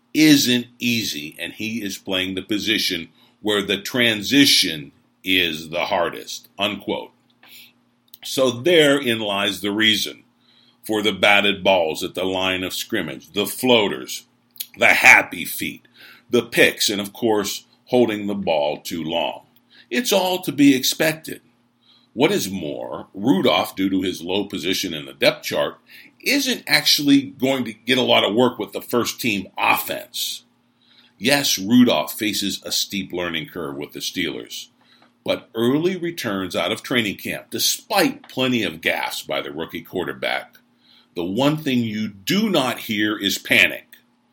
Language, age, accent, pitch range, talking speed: English, 50-69, American, 100-125 Hz, 150 wpm